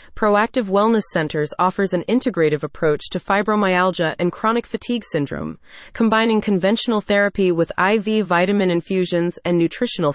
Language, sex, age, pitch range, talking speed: English, female, 30-49, 170-225 Hz, 130 wpm